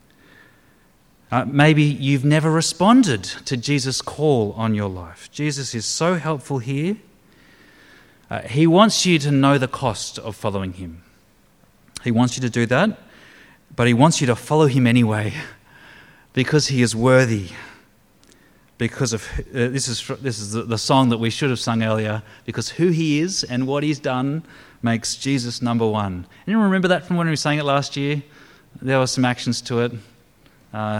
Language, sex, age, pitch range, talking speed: English, male, 30-49, 110-145 Hz, 175 wpm